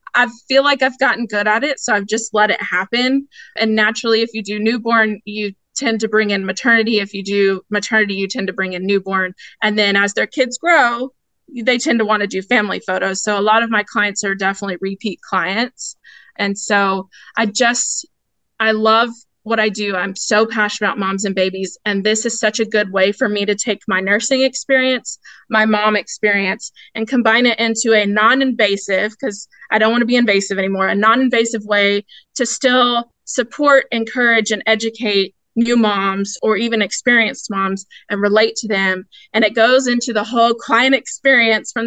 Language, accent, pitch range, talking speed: English, American, 205-240 Hz, 195 wpm